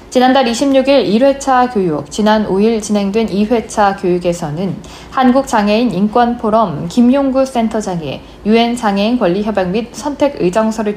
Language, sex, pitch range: Korean, female, 185-240 Hz